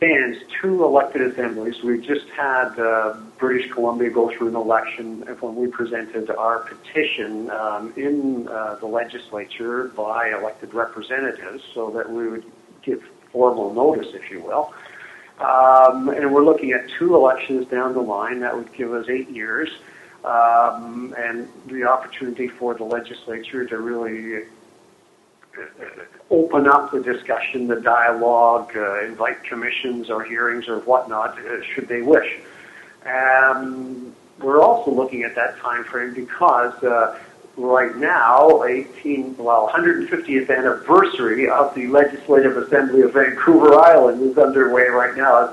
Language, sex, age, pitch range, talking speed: English, male, 50-69, 115-130 Hz, 140 wpm